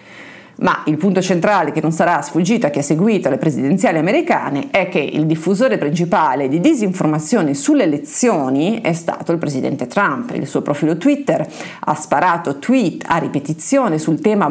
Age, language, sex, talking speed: 40-59, Italian, female, 165 wpm